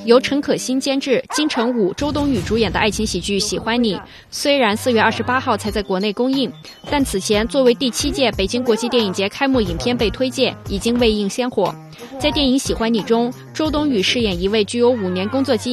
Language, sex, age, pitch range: Chinese, female, 20-39, 205-255 Hz